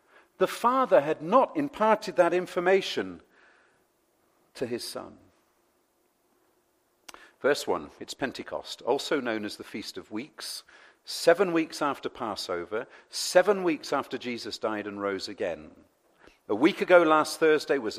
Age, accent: 50-69, British